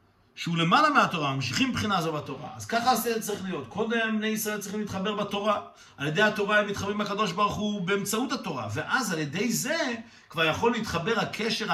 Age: 50-69